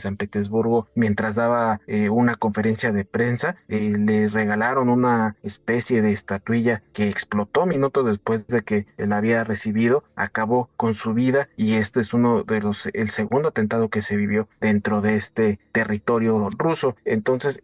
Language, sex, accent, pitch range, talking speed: Spanish, male, Mexican, 110-120 Hz, 160 wpm